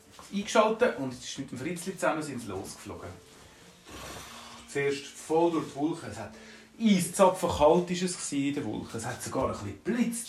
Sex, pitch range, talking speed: male, 115-185 Hz, 180 wpm